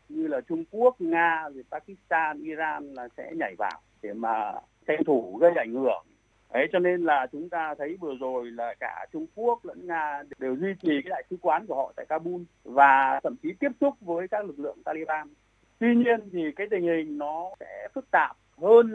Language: Vietnamese